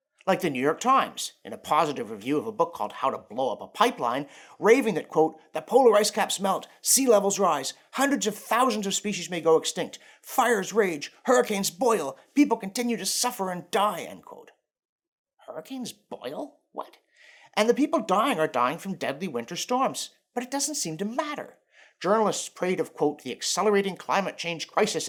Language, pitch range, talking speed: English, 180-250 Hz, 185 wpm